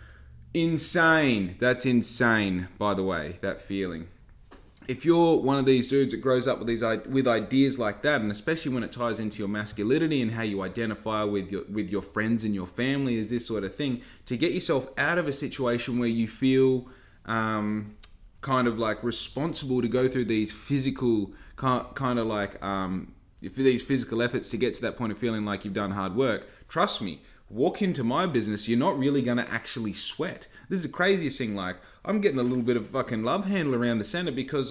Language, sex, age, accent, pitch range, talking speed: English, male, 20-39, Australian, 105-135 Hz, 205 wpm